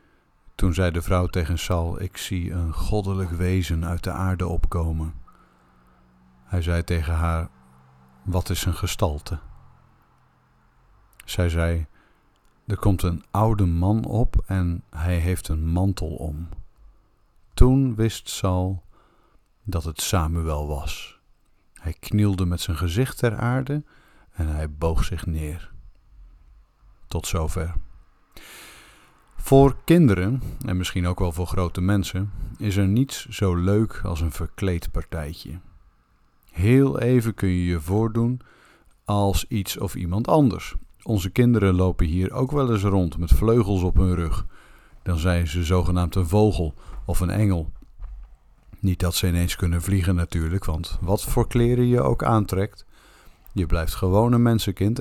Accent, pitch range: Dutch, 85-105 Hz